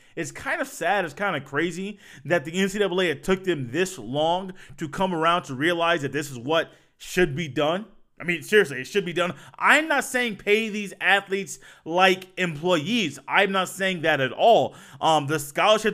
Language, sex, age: English, male, 20-39